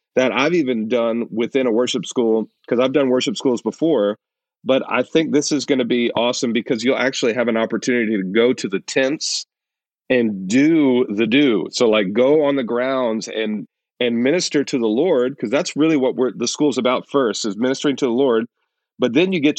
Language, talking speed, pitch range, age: English, 210 wpm, 125-145 Hz, 40-59